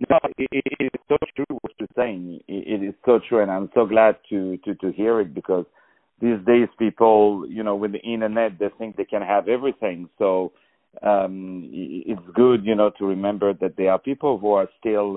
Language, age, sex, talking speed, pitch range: English, 50-69, male, 200 wpm, 100-115 Hz